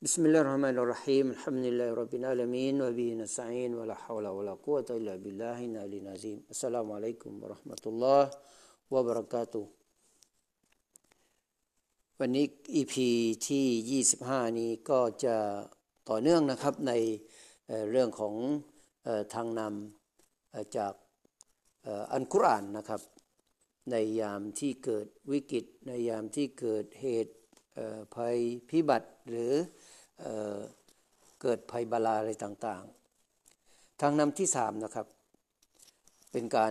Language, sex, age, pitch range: Thai, male, 60-79, 110-130 Hz